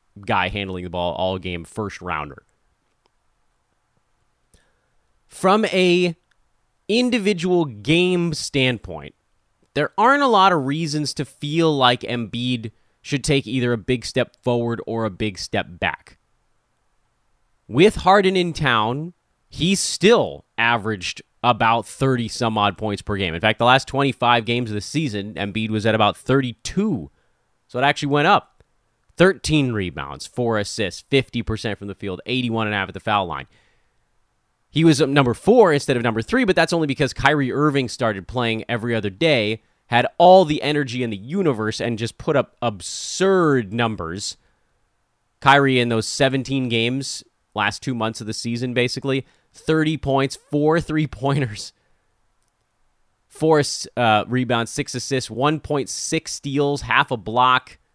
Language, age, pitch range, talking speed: English, 30-49, 110-145 Hz, 145 wpm